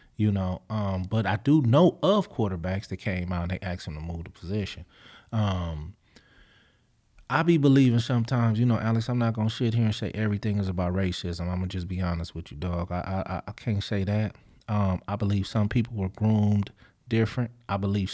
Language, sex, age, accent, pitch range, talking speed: English, male, 30-49, American, 95-115 Hz, 210 wpm